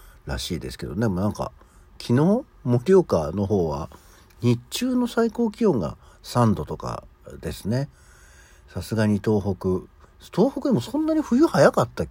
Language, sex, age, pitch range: Japanese, male, 60-79, 75-125 Hz